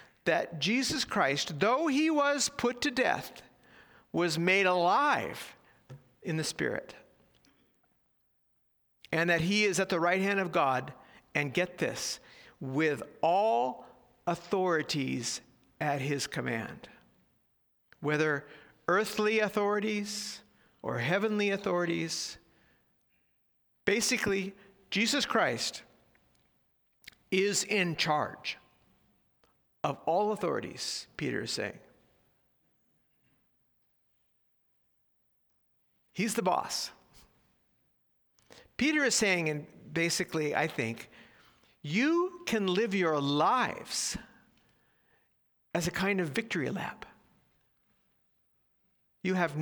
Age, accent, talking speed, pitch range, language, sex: 50-69, American, 90 wpm, 160-215 Hz, English, male